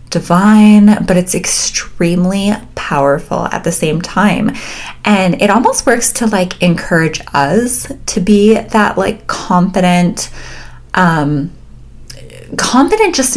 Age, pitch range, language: 20-39, 160-210 Hz, English